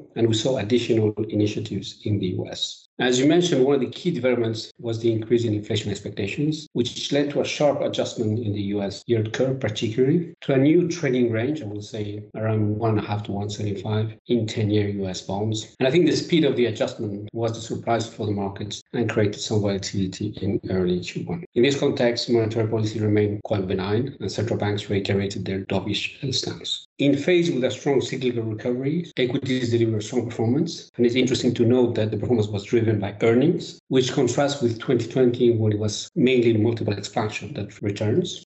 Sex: male